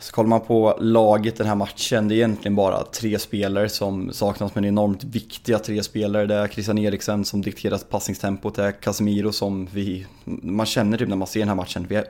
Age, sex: 20-39, male